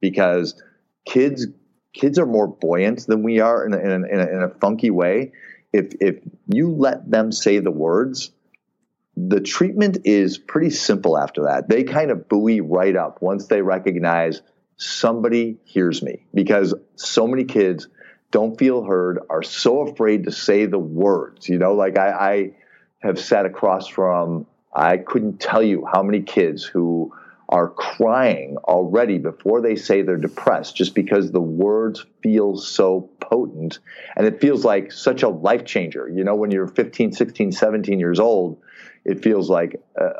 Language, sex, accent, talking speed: English, male, American, 165 wpm